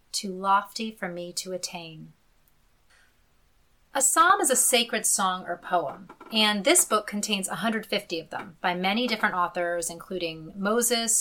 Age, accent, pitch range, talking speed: 30-49, American, 185-250 Hz, 145 wpm